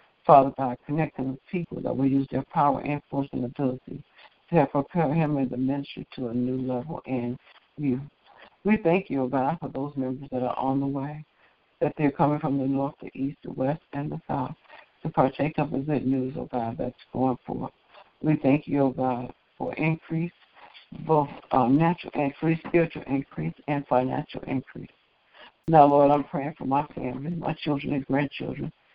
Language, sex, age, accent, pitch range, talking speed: English, female, 60-79, American, 135-155 Hz, 195 wpm